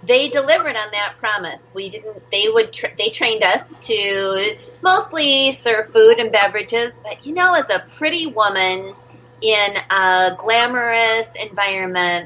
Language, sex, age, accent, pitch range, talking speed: English, female, 30-49, American, 185-275 Hz, 145 wpm